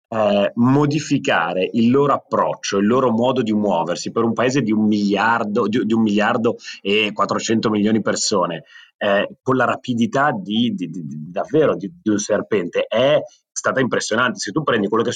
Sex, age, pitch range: male, 30-49, 105-135 Hz